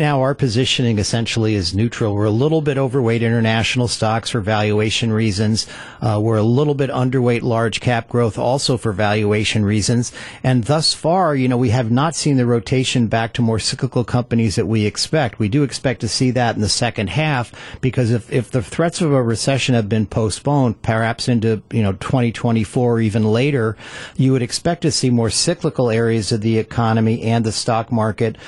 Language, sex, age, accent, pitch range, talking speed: English, male, 50-69, American, 110-135 Hz, 195 wpm